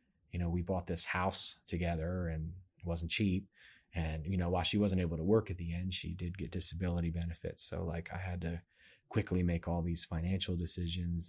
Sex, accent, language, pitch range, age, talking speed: male, American, English, 85-95 Hz, 30-49, 205 wpm